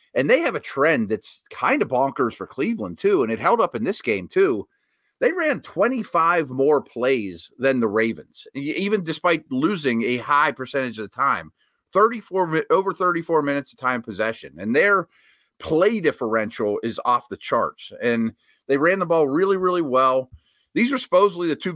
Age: 30-49